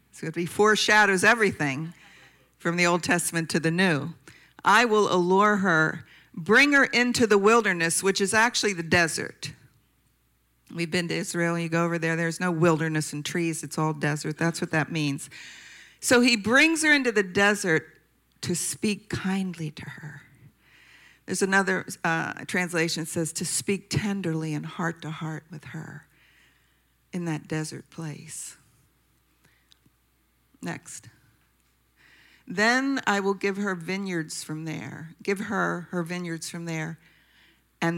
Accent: American